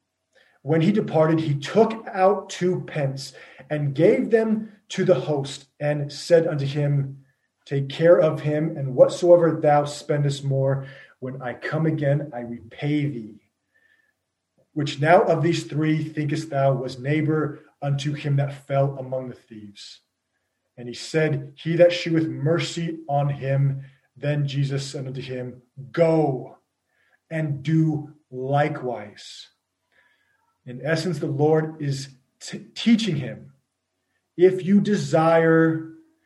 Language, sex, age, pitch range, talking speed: English, male, 30-49, 135-165 Hz, 130 wpm